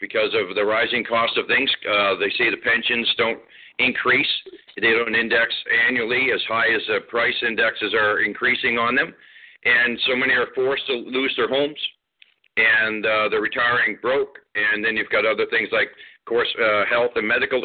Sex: male